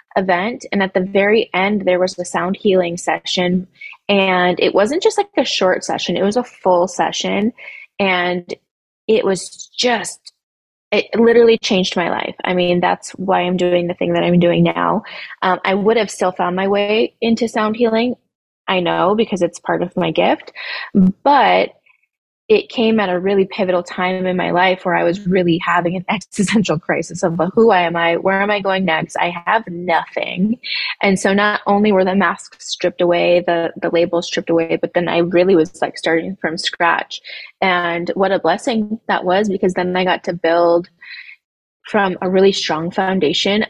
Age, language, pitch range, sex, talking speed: 20-39, English, 175-205 Hz, female, 190 wpm